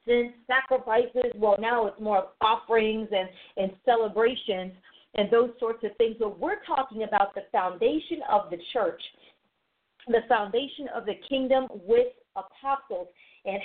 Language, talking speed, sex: English, 140 wpm, female